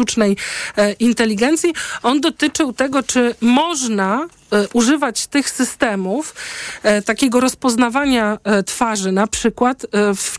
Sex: male